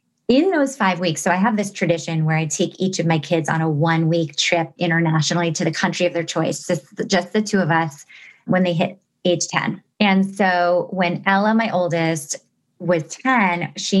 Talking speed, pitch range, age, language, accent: 195 wpm, 170-205 Hz, 30-49, English, American